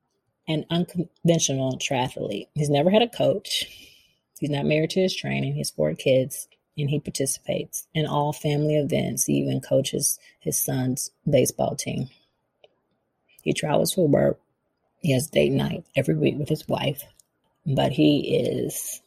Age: 30-49